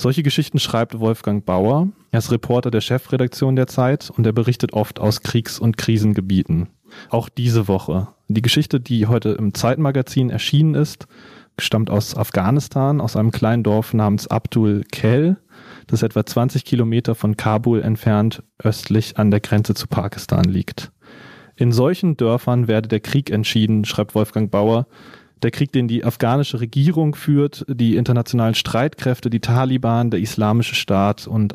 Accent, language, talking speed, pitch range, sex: German, German, 155 wpm, 110-135 Hz, male